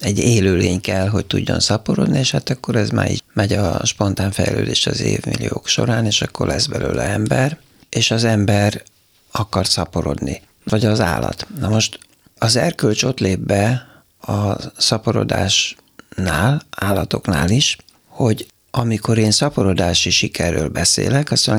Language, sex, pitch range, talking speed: Hungarian, male, 95-115 Hz, 135 wpm